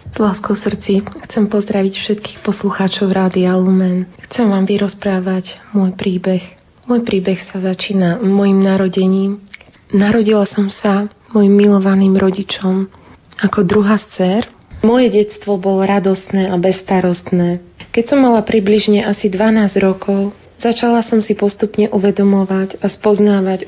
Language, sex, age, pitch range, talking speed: Slovak, female, 30-49, 190-210 Hz, 120 wpm